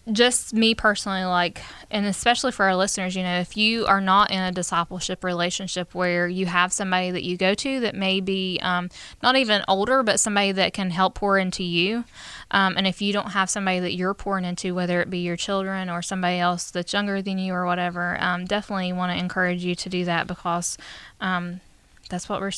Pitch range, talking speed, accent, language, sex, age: 180-205 Hz, 215 wpm, American, English, female, 10-29